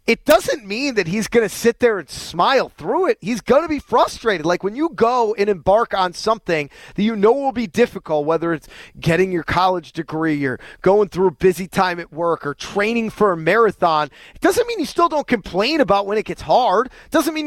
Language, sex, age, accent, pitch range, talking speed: English, male, 30-49, American, 185-245 Hz, 225 wpm